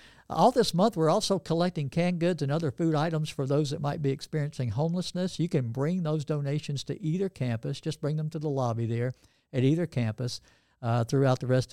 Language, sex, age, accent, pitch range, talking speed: English, male, 60-79, American, 130-160 Hz, 210 wpm